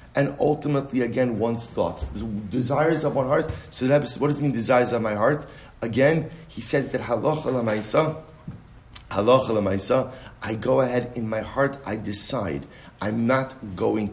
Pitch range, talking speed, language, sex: 110-140 Hz, 140 wpm, English, male